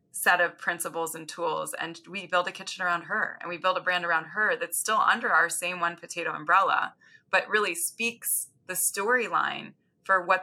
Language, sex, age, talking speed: English, female, 20-39, 195 wpm